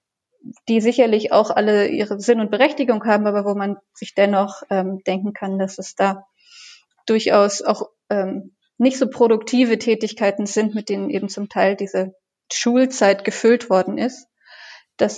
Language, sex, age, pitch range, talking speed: German, female, 20-39, 205-235 Hz, 155 wpm